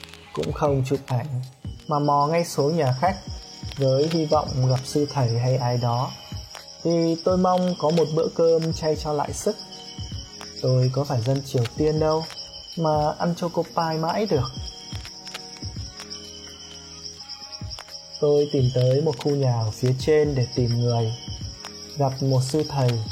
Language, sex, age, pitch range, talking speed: Vietnamese, male, 20-39, 120-150 Hz, 155 wpm